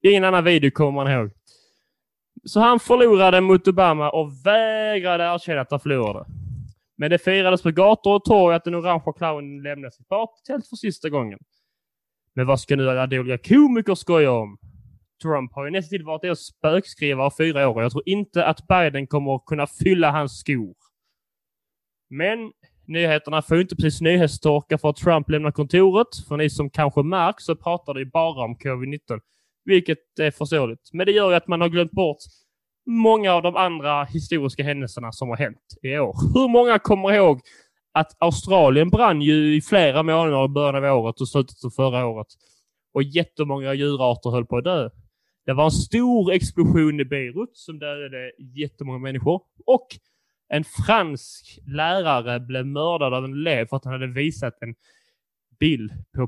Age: 20-39